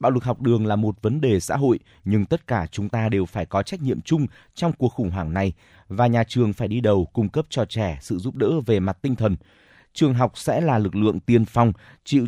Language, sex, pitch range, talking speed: Vietnamese, male, 105-130 Hz, 255 wpm